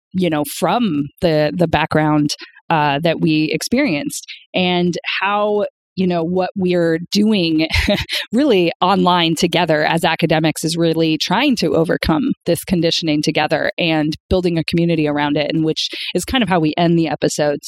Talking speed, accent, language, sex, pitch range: 160 wpm, American, English, female, 160-190 Hz